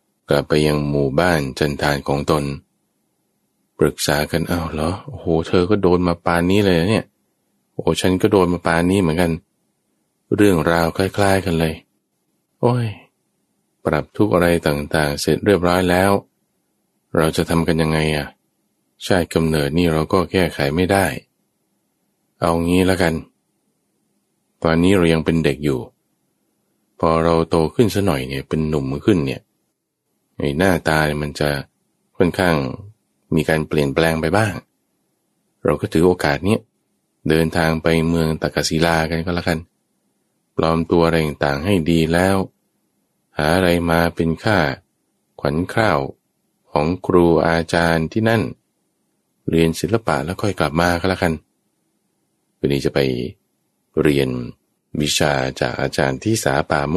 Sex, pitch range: male, 75-90 Hz